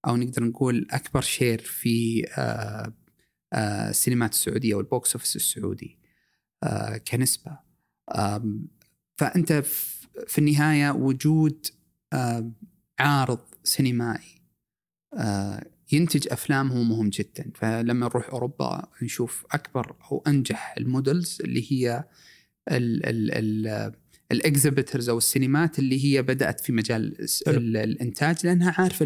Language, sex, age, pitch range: Arabic, male, 30-49, 115-150 Hz